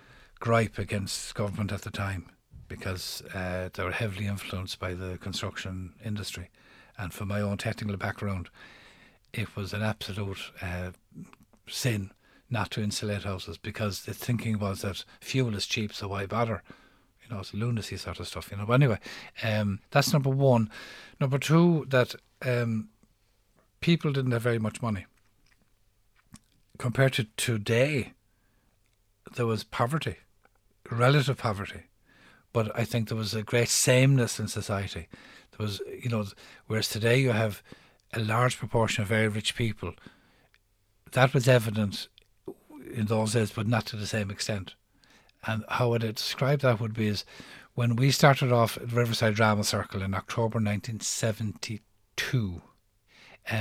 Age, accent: 60-79, Irish